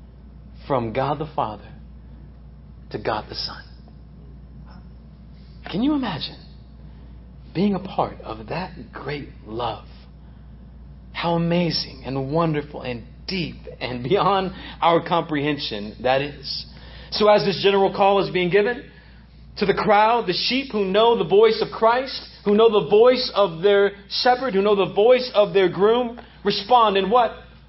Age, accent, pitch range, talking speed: 40-59, American, 130-200 Hz, 145 wpm